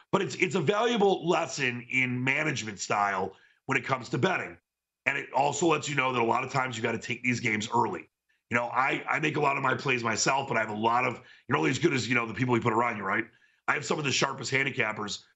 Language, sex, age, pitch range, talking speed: English, male, 40-59, 110-145 Hz, 275 wpm